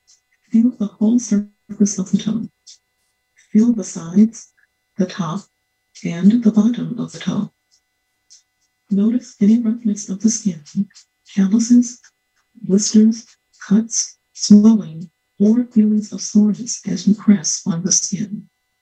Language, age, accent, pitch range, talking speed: English, 60-79, American, 185-220 Hz, 120 wpm